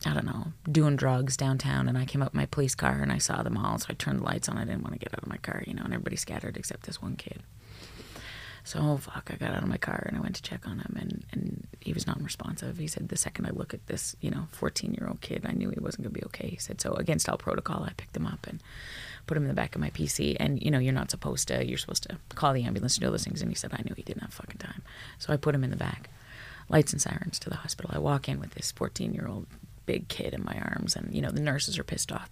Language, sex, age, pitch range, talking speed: English, female, 30-49, 120-170 Hz, 310 wpm